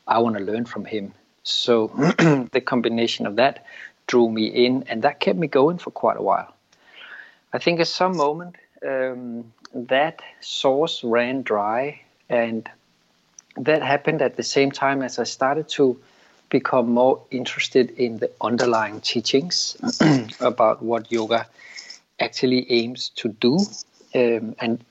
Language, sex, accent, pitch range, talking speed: English, male, Danish, 115-135 Hz, 145 wpm